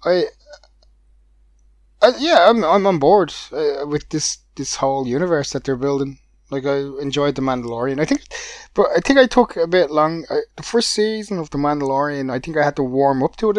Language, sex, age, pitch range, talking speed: English, male, 20-39, 120-160 Hz, 210 wpm